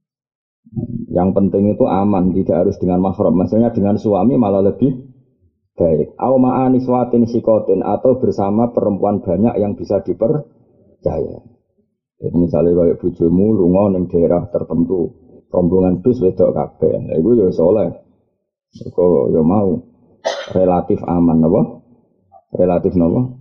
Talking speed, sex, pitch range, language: 125 wpm, male, 90-115 Hz, Indonesian